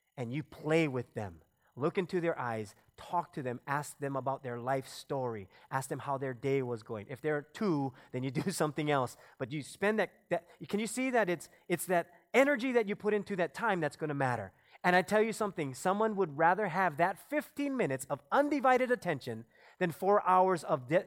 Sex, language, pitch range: male, English, 140-215 Hz